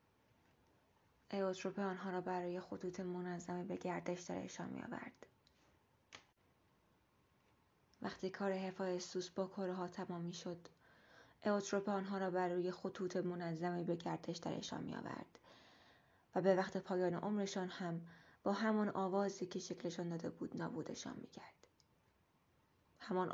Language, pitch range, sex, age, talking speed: Persian, 170-190 Hz, female, 20-39, 120 wpm